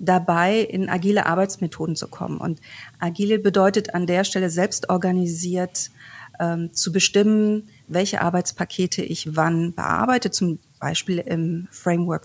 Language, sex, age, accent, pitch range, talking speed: German, female, 40-59, German, 170-195 Hz, 125 wpm